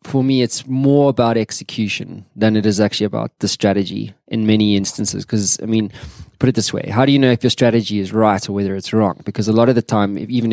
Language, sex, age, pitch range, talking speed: English, male, 20-39, 105-125 Hz, 250 wpm